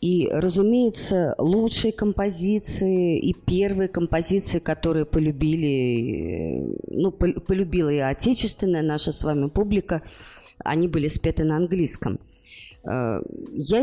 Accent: native